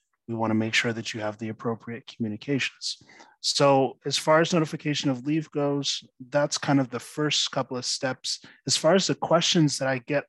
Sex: male